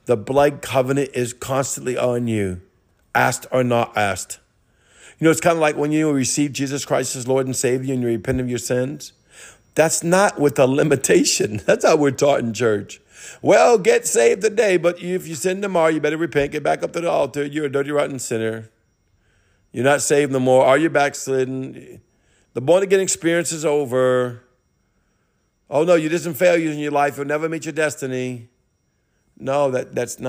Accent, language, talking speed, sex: American, English, 190 wpm, male